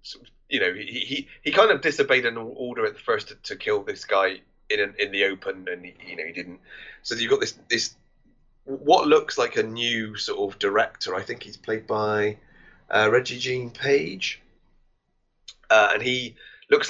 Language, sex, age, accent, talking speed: English, male, 20-39, British, 195 wpm